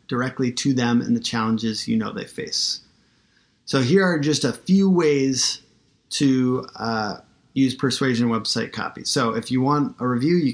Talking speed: 170 wpm